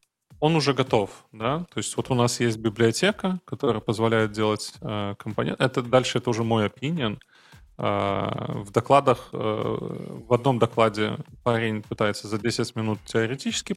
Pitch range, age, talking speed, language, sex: 110-130 Hz, 20-39, 150 wpm, Russian, male